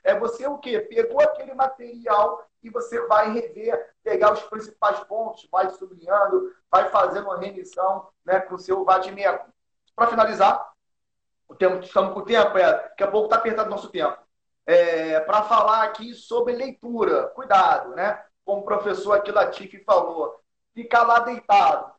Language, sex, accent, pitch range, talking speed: Portuguese, male, Brazilian, 200-255 Hz, 160 wpm